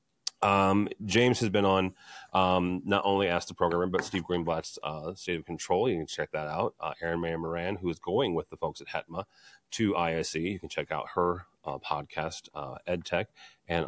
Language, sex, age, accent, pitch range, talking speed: English, male, 30-49, American, 90-110 Hz, 205 wpm